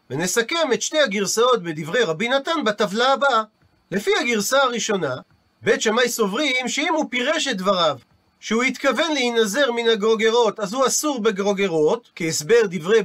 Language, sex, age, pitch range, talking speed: Hebrew, male, 40-59, 200-260 Hz, 145 wpm